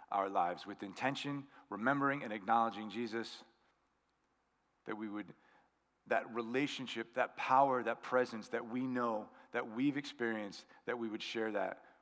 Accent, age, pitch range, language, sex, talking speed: American, 40-59, 110-130 Hz, English, male, 140 wpm